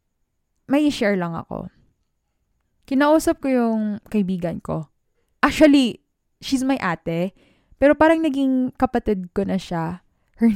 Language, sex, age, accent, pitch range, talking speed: English, female, 10-29, Filipino, 180-245 Hz, 120 wpm